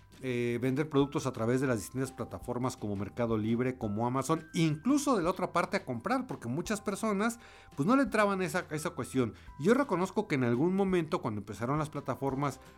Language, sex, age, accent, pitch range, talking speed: Spanish, male, 50-69, Mexican, 115-155 Hz, 195 wpm